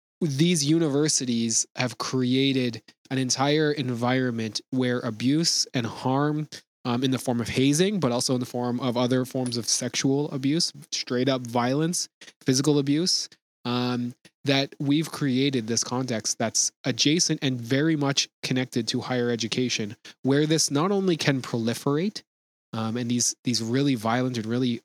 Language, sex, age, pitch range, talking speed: English, male, 20-39, 120-140 Hz, 150 wpm